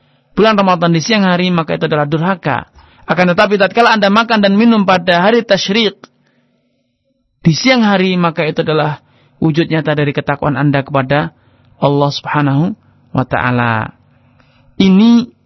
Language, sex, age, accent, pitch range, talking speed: Indonesian, male, 30-49, native, 155-190 Hz, 135 wpm